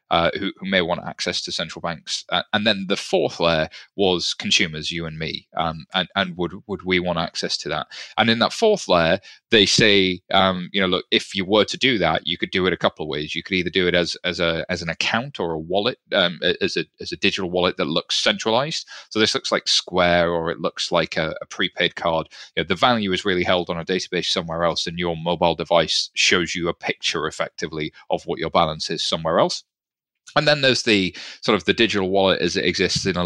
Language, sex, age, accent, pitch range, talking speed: English, male, 30-49, British, 85-110 Hz, 240 wpm